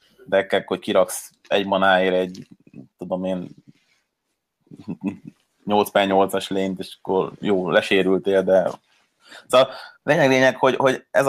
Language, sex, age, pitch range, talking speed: Hungarian, male, 30-49, 95-110 Hz, 115 wpm